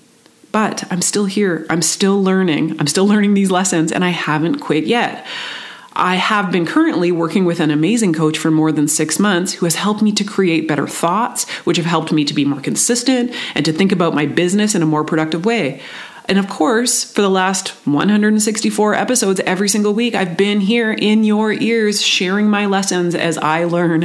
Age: 30-49